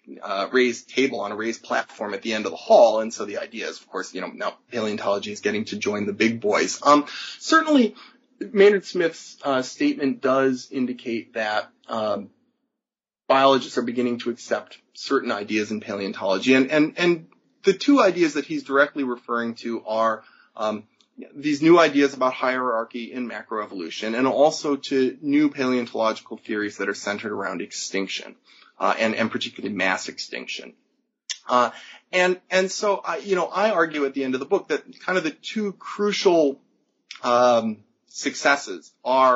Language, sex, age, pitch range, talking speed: English, male, 30-49, 115-170 Hz, 170 wpm